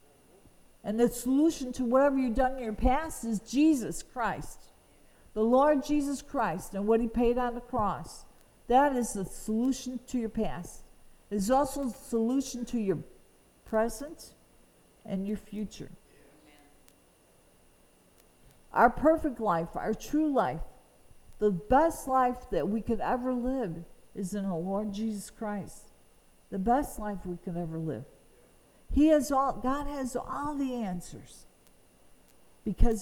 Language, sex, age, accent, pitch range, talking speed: English, female, 50-69, American, 195-265 Hz, 140 wpm